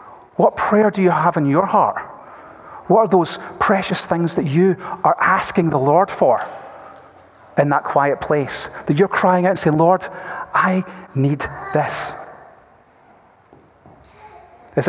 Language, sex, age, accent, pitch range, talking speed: English, male, 40-59, British, 140-185 Hz, 140 wpm